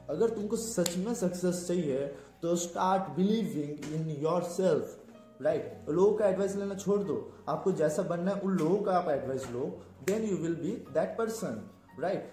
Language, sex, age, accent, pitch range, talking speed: Hindi, male, 20-39, native, 165-215 Hz, 170 wpm